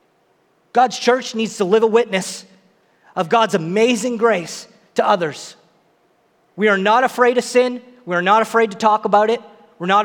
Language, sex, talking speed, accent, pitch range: English, male, 175 wpm, American, 205-245 Hz